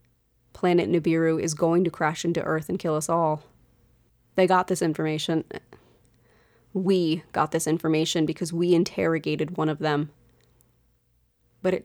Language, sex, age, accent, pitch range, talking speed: English, female, 30-49, American, 150-185 Hz, 140 wpm